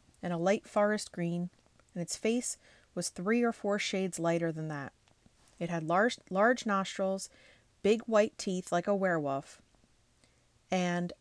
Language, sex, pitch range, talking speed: English, female, 160-205 Hz, 150 wpm